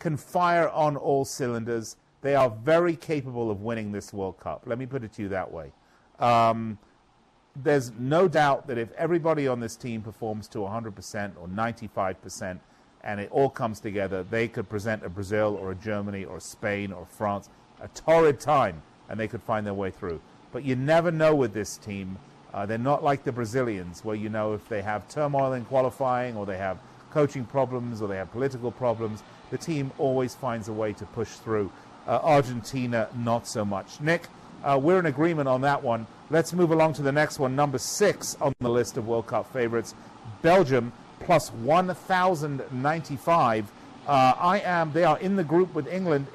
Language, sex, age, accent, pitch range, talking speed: English, male, 40-59, British, 110-155 Hz, 190 wpm